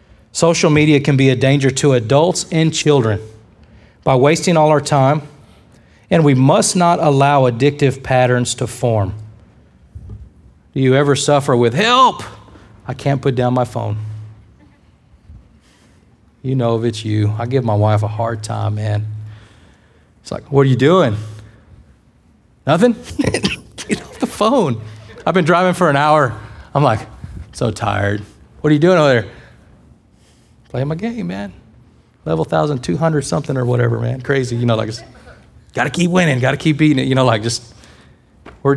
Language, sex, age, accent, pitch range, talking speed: English, male, 40-59, American, 110-145 Hz, 165 wpm